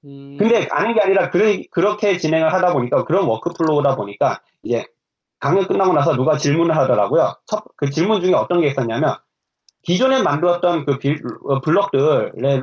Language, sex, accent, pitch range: Korean, male, native, 140-205 Hz